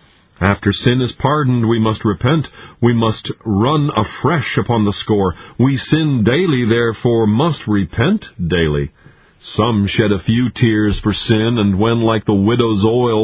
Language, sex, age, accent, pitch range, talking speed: English, male, 50-69, American, 100-125 Hz, 155 wpm